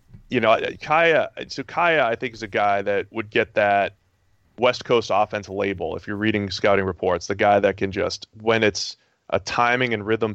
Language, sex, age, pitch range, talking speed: English, male, 20-39, 100-115 Hz, 190 wpm